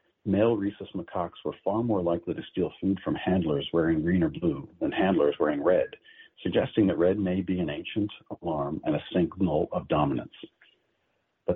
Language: English